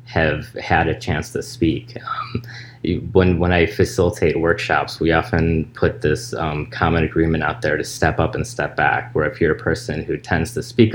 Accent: American